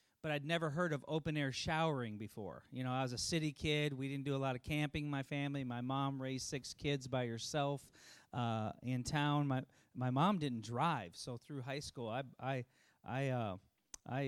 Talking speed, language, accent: 200 wpm, English, American